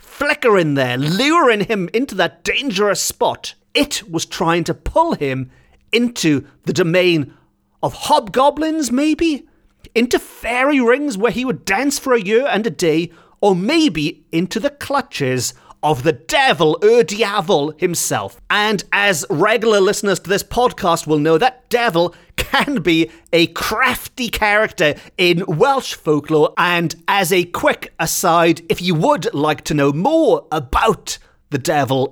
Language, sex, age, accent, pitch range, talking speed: English, male, 40-59, British, 150-235 Hz, 145 wpm